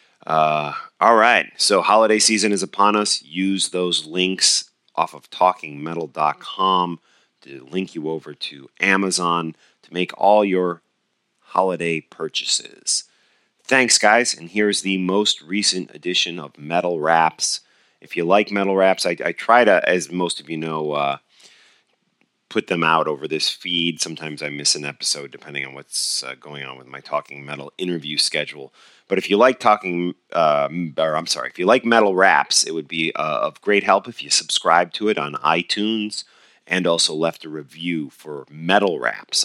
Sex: male